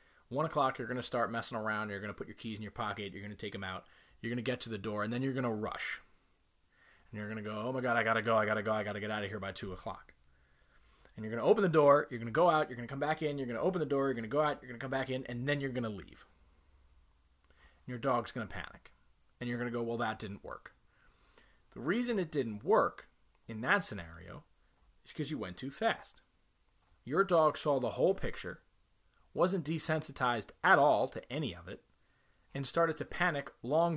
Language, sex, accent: English, male, American